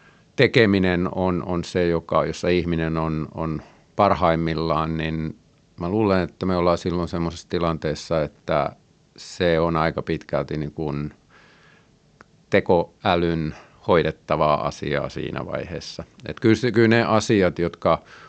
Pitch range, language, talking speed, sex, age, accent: 80-100 Hz, Finnish, 120 wpm, male, 50-69, native